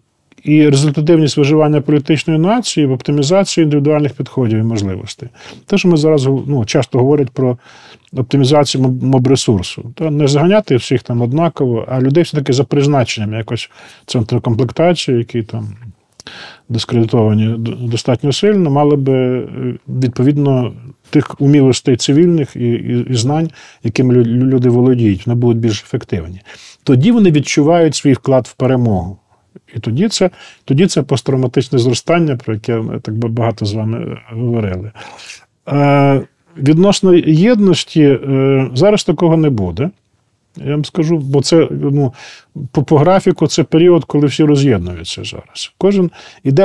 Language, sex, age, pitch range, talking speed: Ukrainian, male, 40-59, 120-155 Hz, 130 wpm